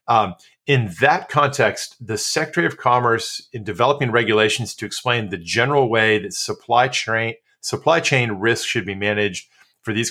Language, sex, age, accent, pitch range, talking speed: English, male, 30-49, American, 105-140 Hz, 160 wpm